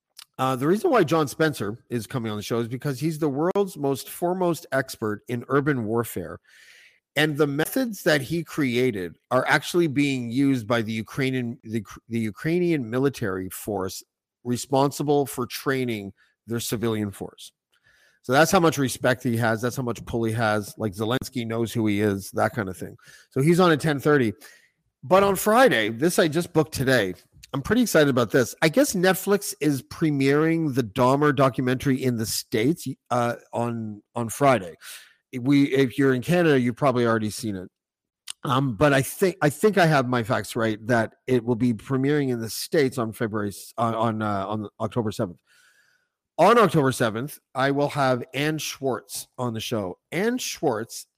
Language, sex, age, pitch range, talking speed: English, male, 40-59, 115-150 Hz, 180 wpm